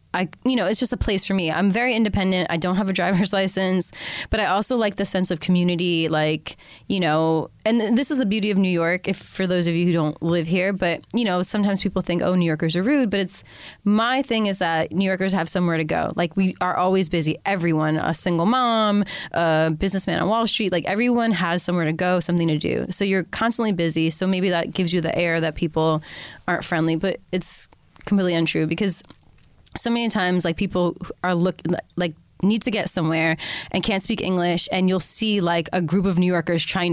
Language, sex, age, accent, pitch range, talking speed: English, female, 20-39, American, 165-195 Hz, 225 wpm